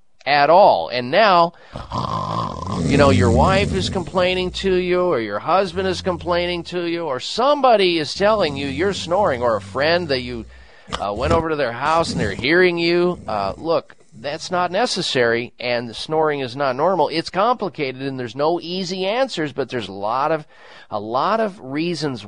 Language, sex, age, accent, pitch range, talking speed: English, male, 40-59, American, 125-170 Hz, 190 wpm